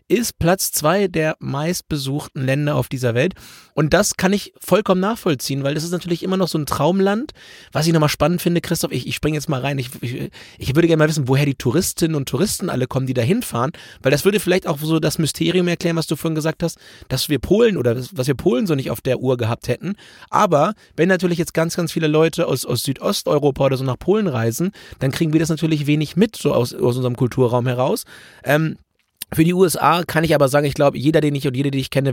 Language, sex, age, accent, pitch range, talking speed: German, male, 30-49, German, 130-165 Hz, 235 wpm